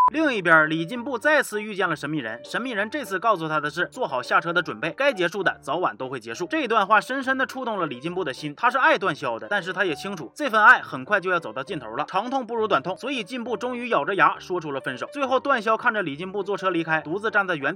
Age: 20-39